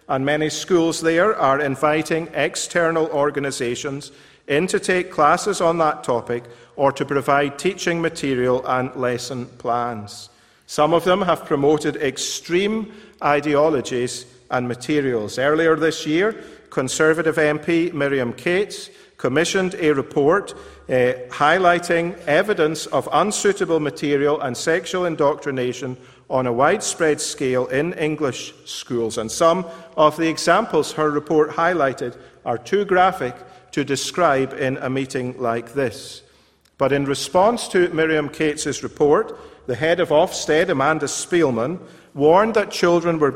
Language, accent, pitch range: English, British, 135-170 Hz